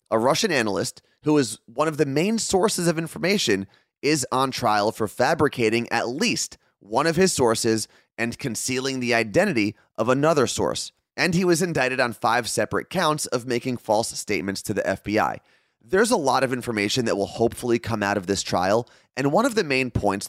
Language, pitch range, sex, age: English, 105-140 Hz, male, 30-49